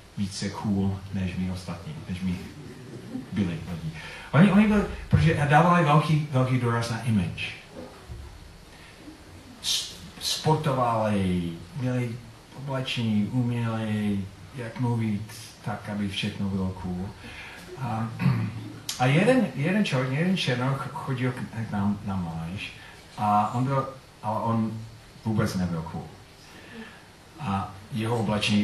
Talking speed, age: 110 wpm, 40-59